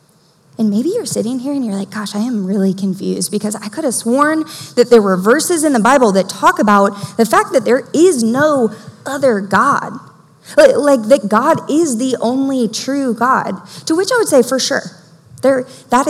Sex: female